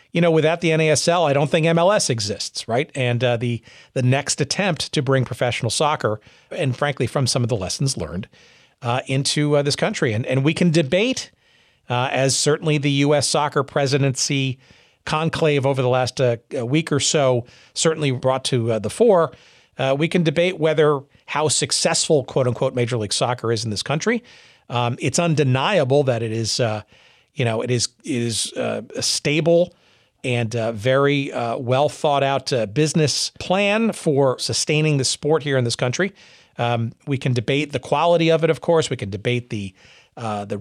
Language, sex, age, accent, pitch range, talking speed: English, male, 40-59, American, 120-155 Hz, 180 wpm